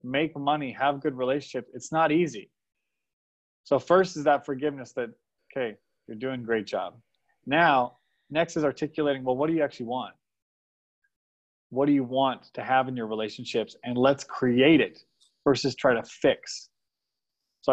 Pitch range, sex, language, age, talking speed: 110-145 Hz, male, Indonesian, 20-39, 160 wpm